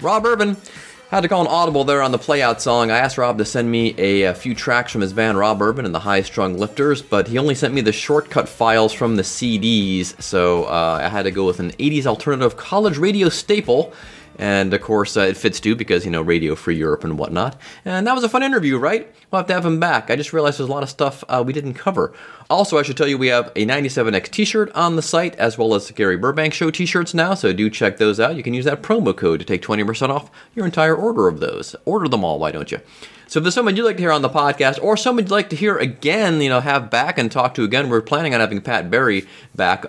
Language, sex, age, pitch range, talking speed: English, male, 30-49, 105-170 Hz, 265 wpm